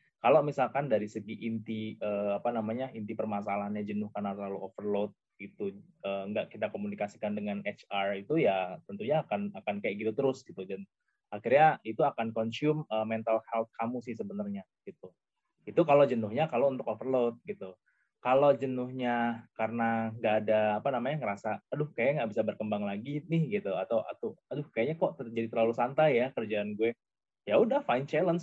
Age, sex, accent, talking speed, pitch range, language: 20-39, male, native, 165 wpm, 100-130 Hz, Indonesian